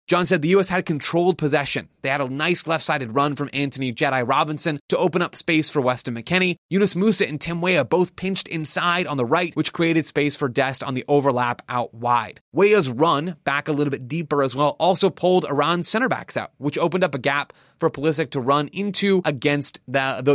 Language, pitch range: English, 140-180 Hz